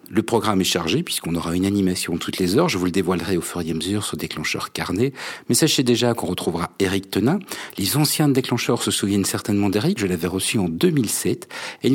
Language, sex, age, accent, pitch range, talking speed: French, male, 50-69, French, 90-125 Hz, 220 wpm